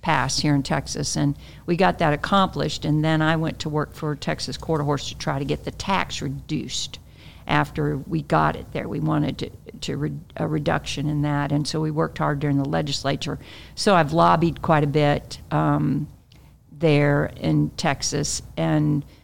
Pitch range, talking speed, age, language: 145-170 Hz, 185 wpm, 50-69, English